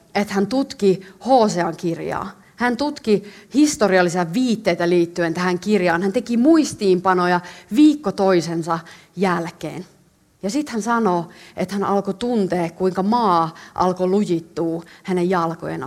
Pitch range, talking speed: 170-225 Hz, 120 wpm